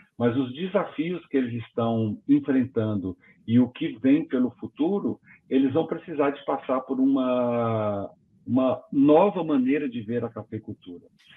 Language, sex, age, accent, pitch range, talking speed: Portuguese, male, 50-69, Brazilian, 110-155 Hz, 145 wpm